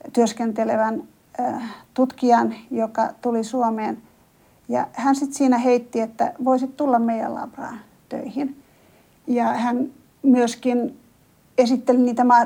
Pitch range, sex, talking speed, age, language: 225-255 Hz, female, 100 wpm, 50-69, Finnish